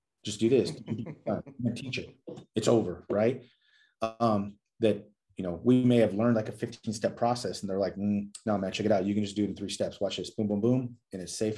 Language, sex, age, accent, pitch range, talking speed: English, male, 30-49, American, 95-115 Hz, 235 wpm